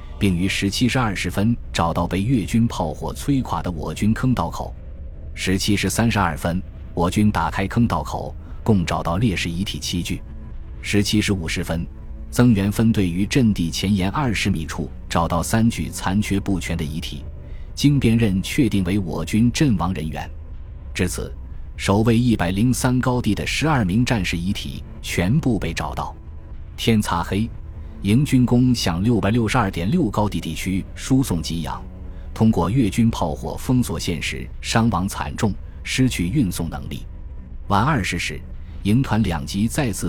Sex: male